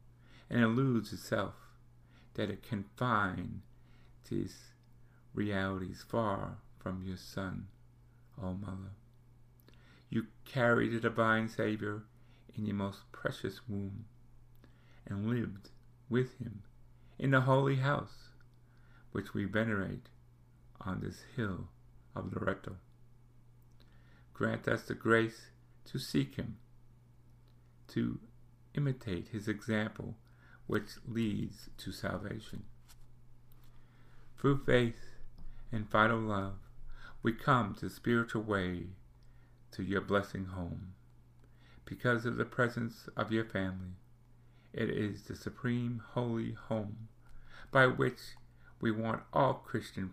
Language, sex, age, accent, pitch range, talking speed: English, male, 50-69, American, 105-120 Hz, 110 wpm